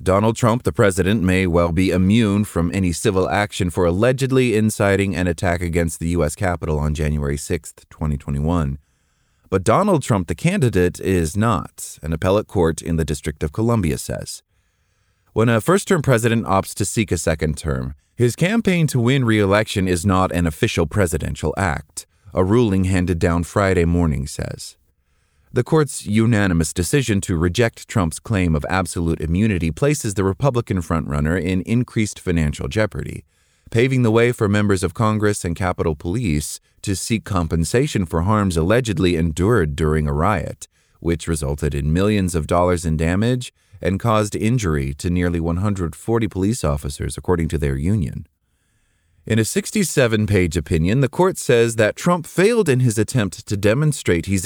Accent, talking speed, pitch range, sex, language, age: American, 160 wpm, 85-110 Hz, male, English, 30-49